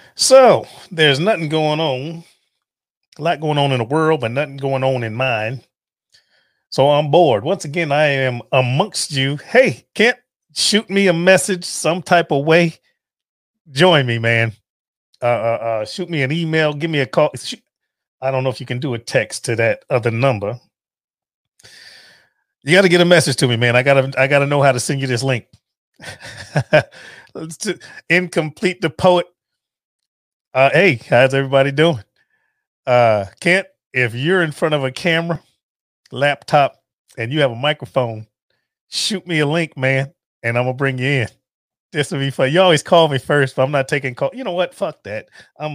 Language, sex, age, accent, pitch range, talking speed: English, male, 30-49, American, 130-175 Hz, 180 wpm